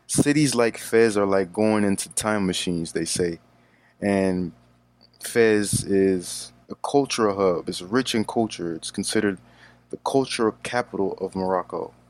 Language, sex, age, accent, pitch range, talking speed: English, male, 20-39, American, 90-110 Hz, 140 wpm